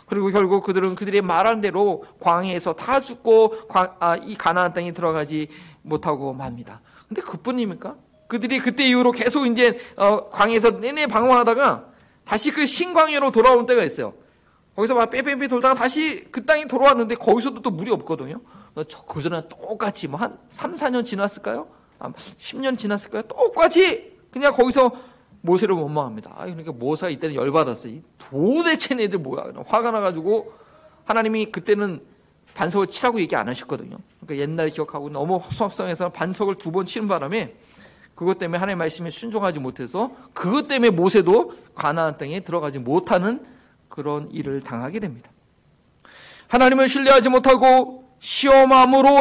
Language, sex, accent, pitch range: Korean, male, native, 175-255 Hz